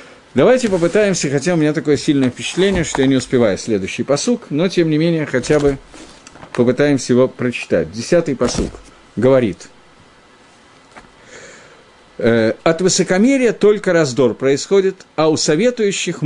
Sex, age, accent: male, 50-69, native